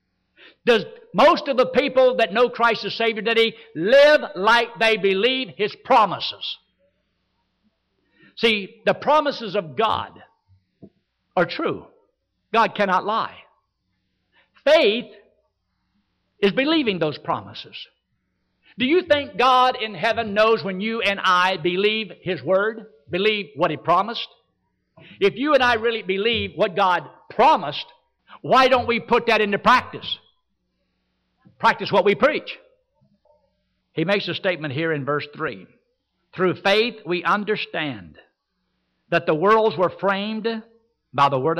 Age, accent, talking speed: 60-79, American, 130 wpm